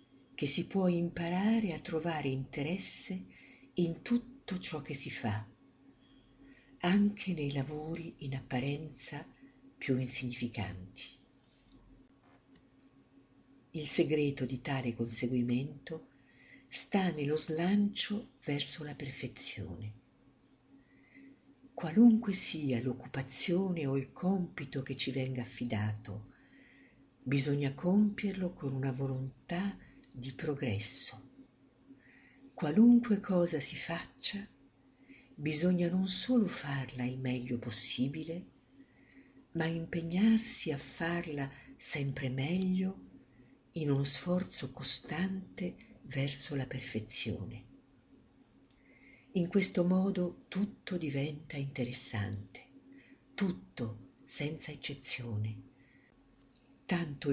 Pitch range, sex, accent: 130-180 Hz, female, native